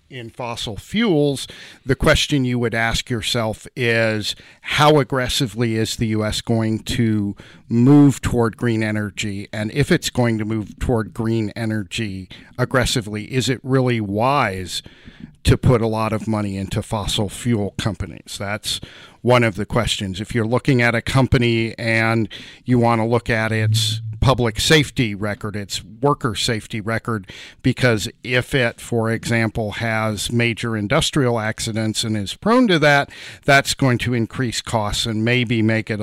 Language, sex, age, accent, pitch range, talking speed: English, male, 50-69, American, 110-125 Hz, 155 wpm